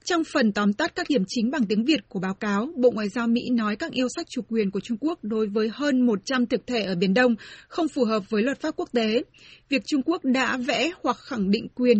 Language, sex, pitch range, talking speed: Vietnamese, female, 220-265 Hz, 260 wpm